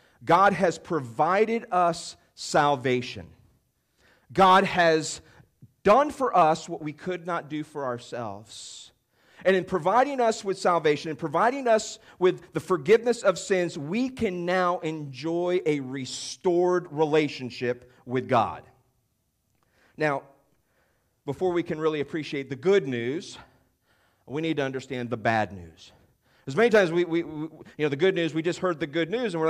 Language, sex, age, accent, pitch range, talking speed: English, male, 40-59, American, 140-180 Hz, 155 wpm